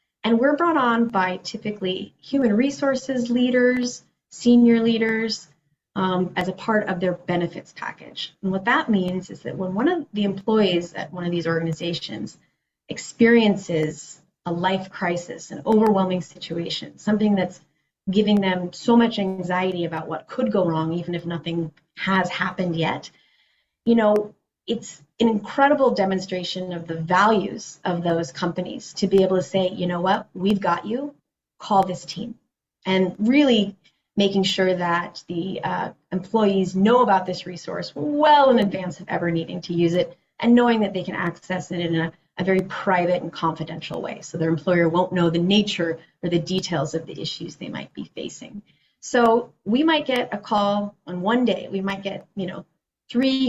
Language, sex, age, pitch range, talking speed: English, female, 30-49, 175-225 Hz, 175 wpm